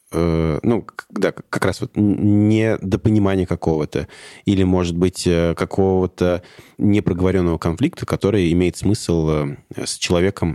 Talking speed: 100 wpm